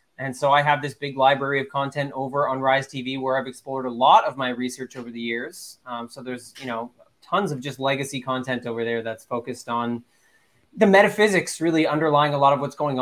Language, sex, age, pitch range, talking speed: English, male, 20-39, 125-150 Hz, 220 wpm